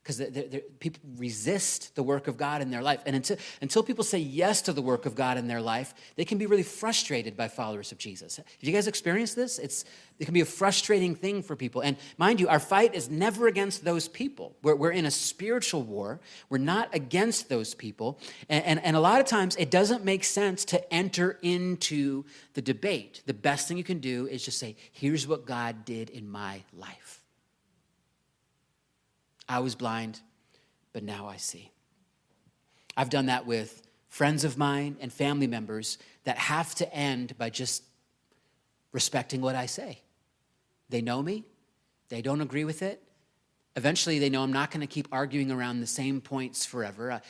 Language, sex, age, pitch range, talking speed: English, male, 30-49, 125-165 Hz, 190 wpm